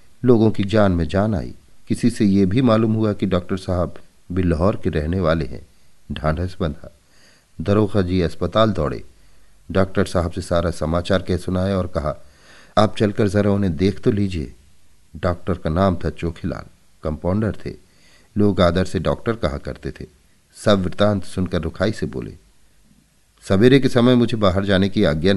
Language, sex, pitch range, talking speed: Hindi, male, 85-115 Hz, 170 wpm